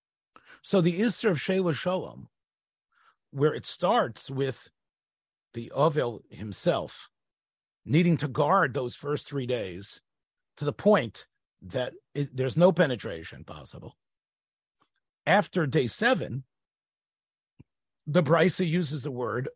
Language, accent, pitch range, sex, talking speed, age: English, American, 130-180 Hz, male, 115 wpm, 50-69